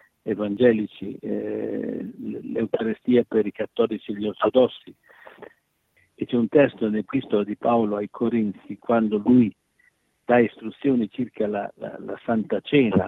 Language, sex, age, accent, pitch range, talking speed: Italian, male, 60-79, native, 110-135 Hz, 135 wpm